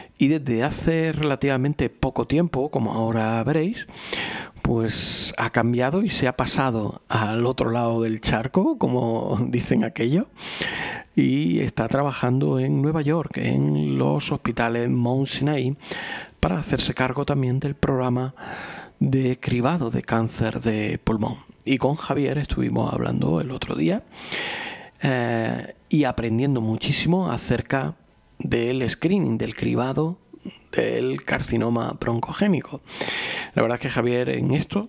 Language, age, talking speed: Spanish, 40-59, 130 wpm